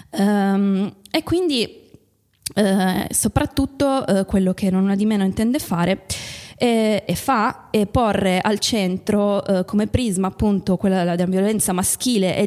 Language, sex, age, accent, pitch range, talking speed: Italian, female, 20-39, native, 190-215 Hz, 125 wpm